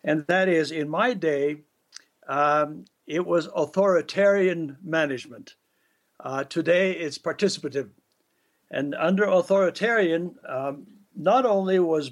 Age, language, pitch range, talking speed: 60-79, English, 150-185 Hz, 110 wpm